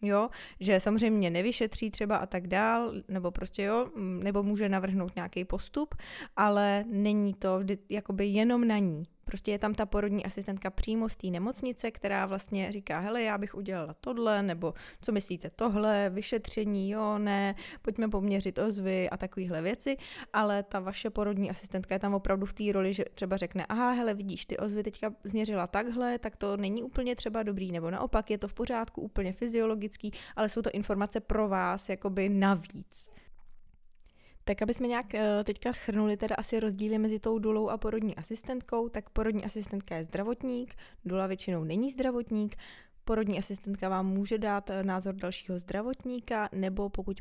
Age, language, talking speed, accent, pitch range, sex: 20-39, Czech, 170 wpm, native, 190-220 Hz, female